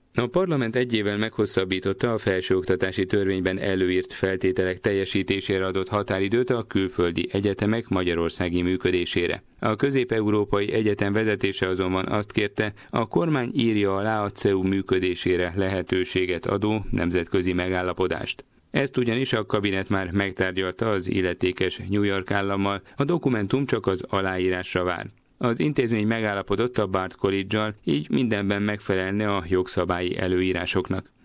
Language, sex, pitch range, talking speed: Hungarian, male, 95-115 Hz, 120 wpm